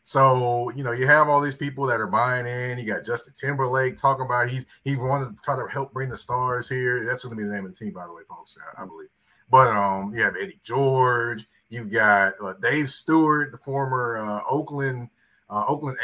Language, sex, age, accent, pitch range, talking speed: English, male, 30-49, American, 105-140 Hz, 235 wpm